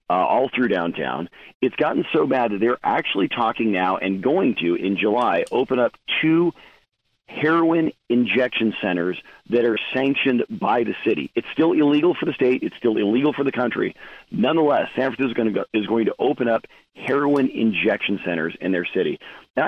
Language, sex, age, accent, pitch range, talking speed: English, male, 40-59, American, 105-135 Hz, 175 wpm